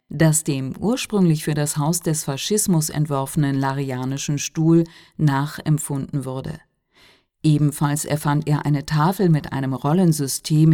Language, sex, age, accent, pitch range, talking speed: Italian, female, 40-59, German, 140-175 Hz, 115 wpm